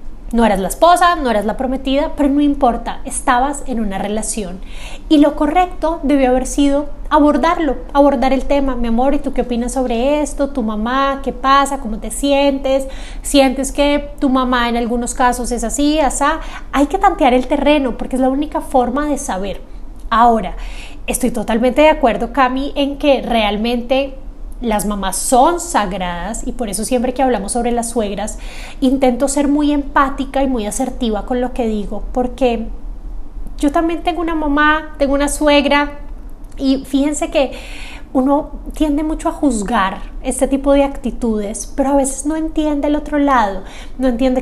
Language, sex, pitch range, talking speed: Spanish, female, 240-285 Hz, 170 wpm